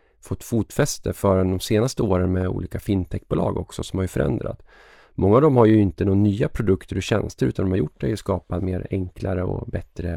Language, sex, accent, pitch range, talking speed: Swedish, male, native, 90-110 Hz, 210 wpm